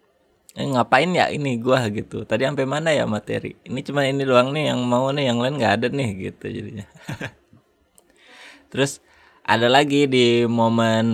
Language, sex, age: Indonesian, male, 20-39